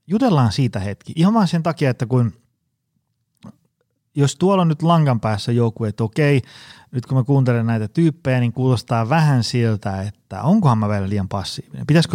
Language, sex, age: Finnish, male, 30-49